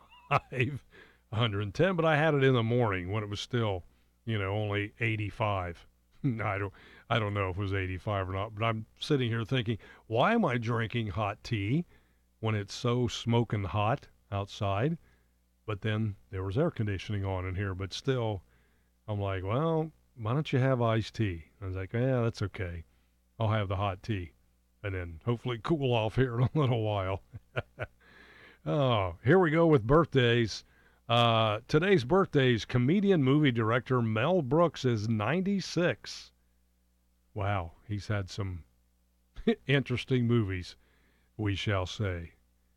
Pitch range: 95-125 Hz